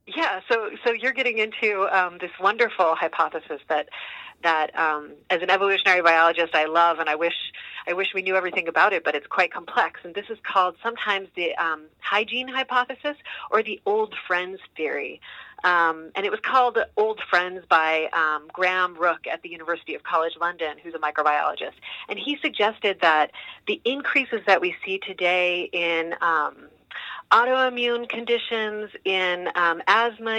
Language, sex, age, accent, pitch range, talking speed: English, female, 30-49, American, 170-220 Hz, 165 wpm